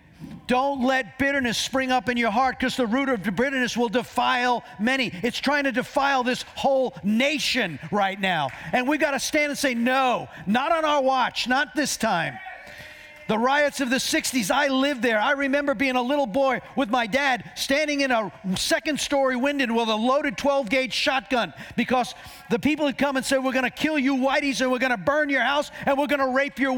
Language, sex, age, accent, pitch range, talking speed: English, male, 50-69, American, 230-280 Hz, 210 wpm